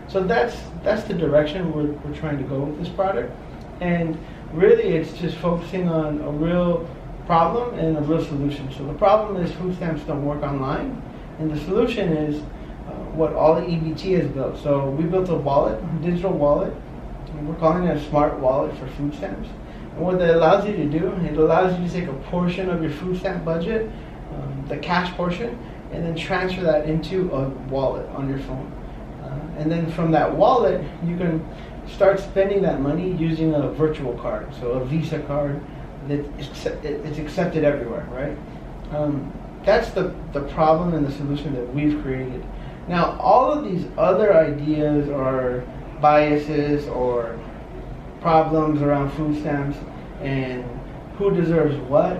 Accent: American